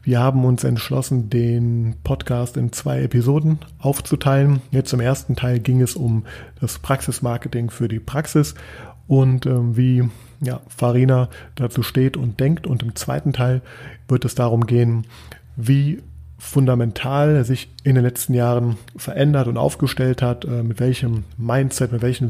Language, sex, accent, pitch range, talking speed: German, male, German, 120-135 Hz, 155 wpm